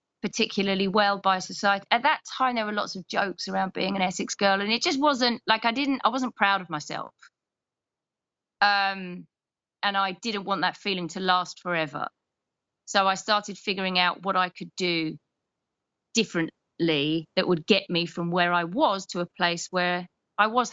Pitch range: 180-225 Hz